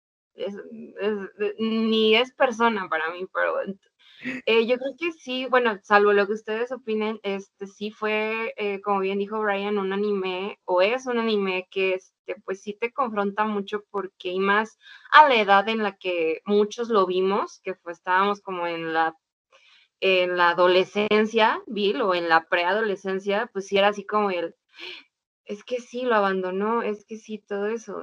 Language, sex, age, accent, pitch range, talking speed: Spanish, female, 20-39, Mexican, 185-225 Hz, 180 wpm